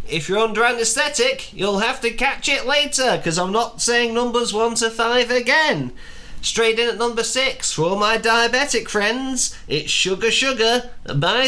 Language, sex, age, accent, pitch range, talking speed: English, male, 30-49, British, 210-270 Hz, 175 wpm